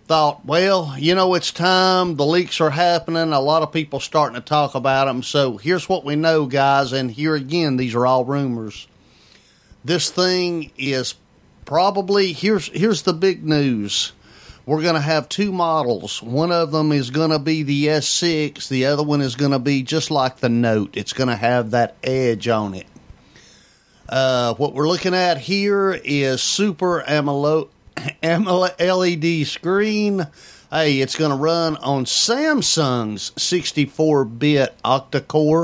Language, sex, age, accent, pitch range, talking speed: English, male, 40-59, American, 135-170 Hz, 160 wpm